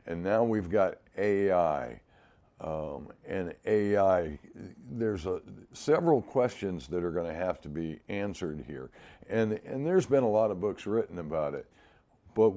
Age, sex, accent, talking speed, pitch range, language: 60-79, male, American, 160 wpm, 85-115 Hz, English